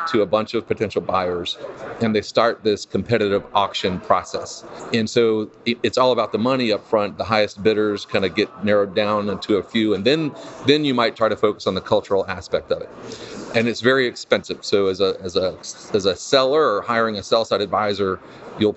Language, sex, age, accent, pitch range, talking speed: English, male, 40-59, American, 100-115 Hz, 210 wpm